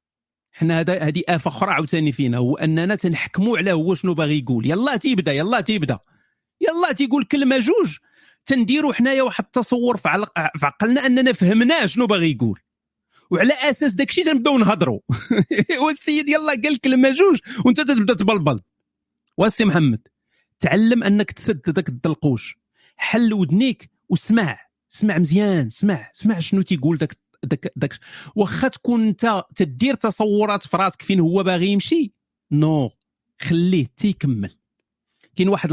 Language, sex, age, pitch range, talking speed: Arabic, male, 40-59, 150-230 Hz, 140 wpm